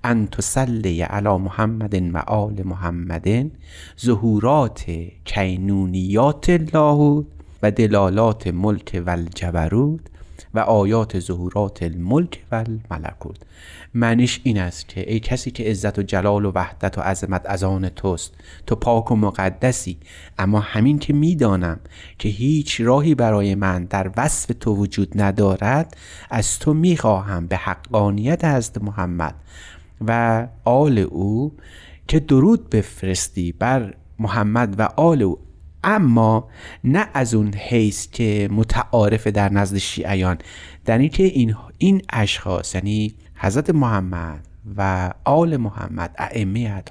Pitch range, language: 90-120 Hz, Persian